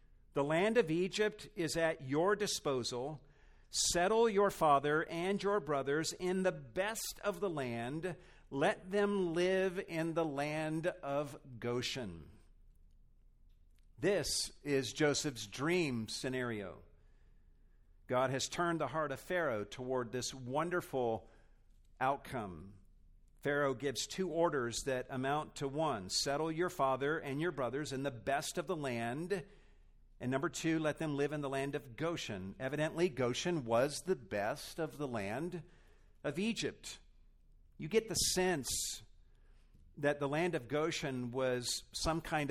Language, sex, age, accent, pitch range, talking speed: English, male, 50-69, American, 110-160 Hz, 135 wpm